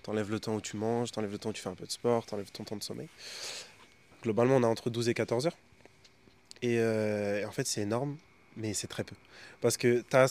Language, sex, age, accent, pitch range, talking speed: French, male, 20-39, French, 115-140 Hz, 245 wpm